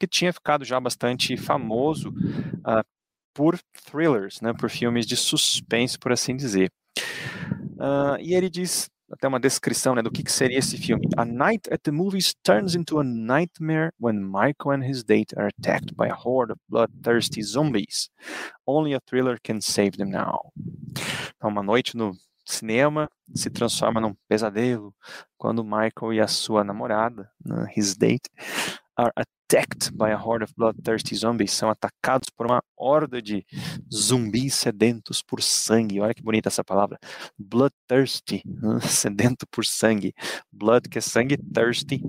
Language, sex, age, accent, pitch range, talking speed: Portuguese, male, 30-49, Brazilian, 110-145 Hz, 160 wpm